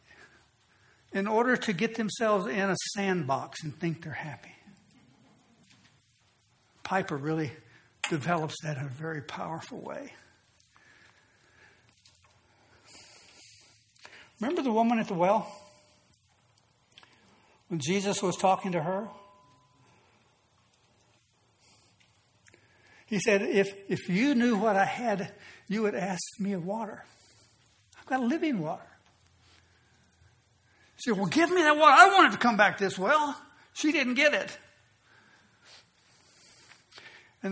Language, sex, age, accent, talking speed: English, male, 60-79, American, 115 wpm